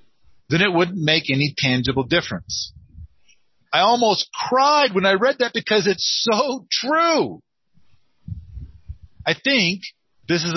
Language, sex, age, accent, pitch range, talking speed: English, male, 50-69, American, 140-220 Hz, 125 wpm